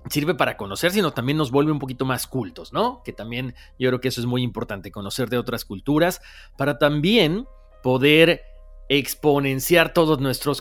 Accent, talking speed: Mexican, 175 wpm